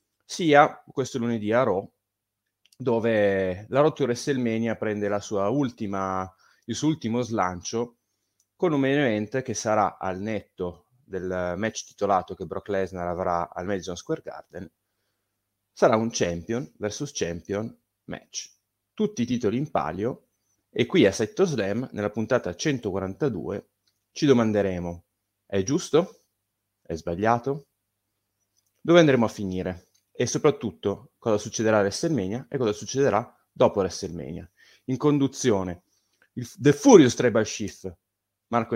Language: Italian